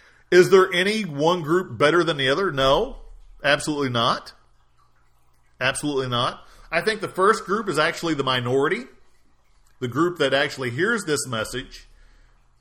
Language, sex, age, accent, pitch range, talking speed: English, male, 40-59, American, 120-170 Hz, 145 wpm